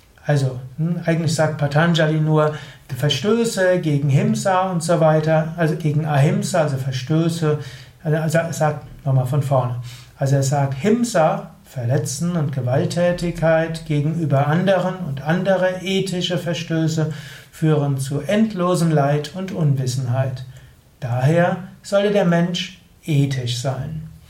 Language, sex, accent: German, male, German